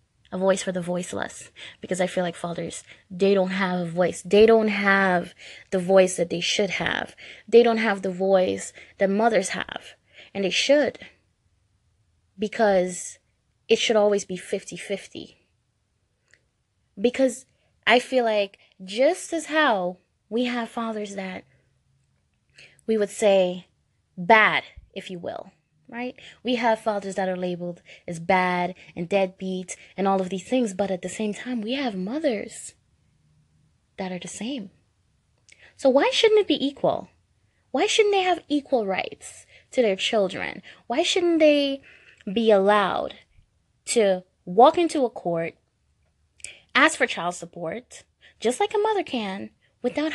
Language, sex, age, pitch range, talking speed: English, female, 20-39, 180-245 Hz, 145 wpm